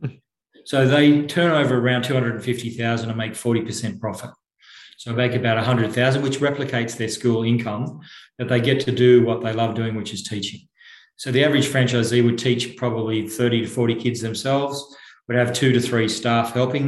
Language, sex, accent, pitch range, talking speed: English, male, Australian, 115-130 Hz, 180 wpm